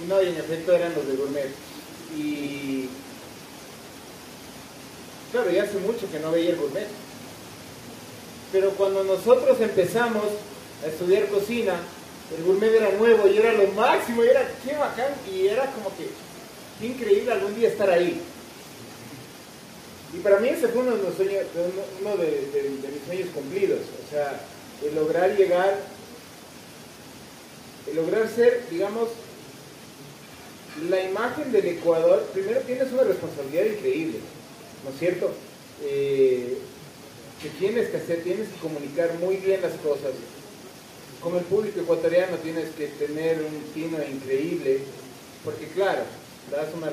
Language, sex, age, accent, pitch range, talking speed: Spanish, male, 30-49, Mexican, 160-255 Hz, 140 wpm